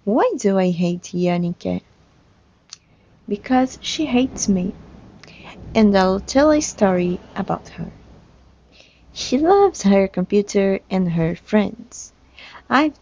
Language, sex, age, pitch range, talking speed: English, female, 20-39, 180-230 Hz, 110 wpm